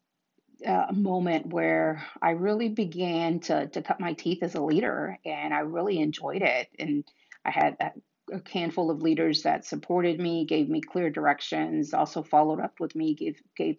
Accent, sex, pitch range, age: American, female, 150-180 Hz, 30-49